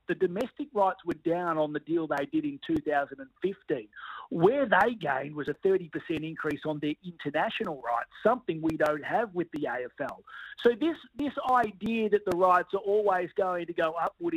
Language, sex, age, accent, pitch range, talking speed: English, male, 40-59, Australian, 155-195 Hz, 180 wpm